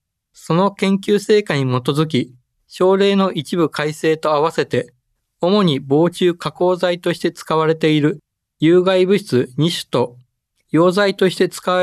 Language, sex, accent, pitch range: Japanese, male, native, 130-185 Hz